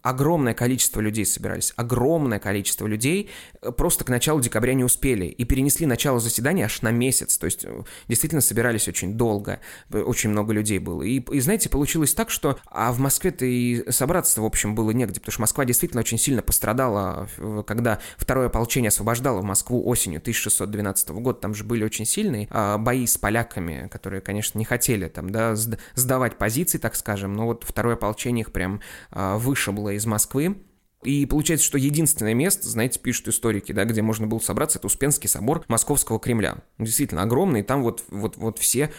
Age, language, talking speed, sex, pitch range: 20-39, Russian, 175 wpm, male, 105-140 Hz